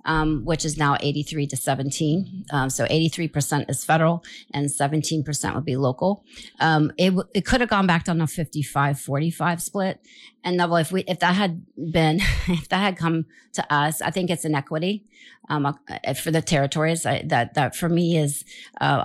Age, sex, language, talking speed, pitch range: 40-59, female, English, 190 wpm, 145-180 Hz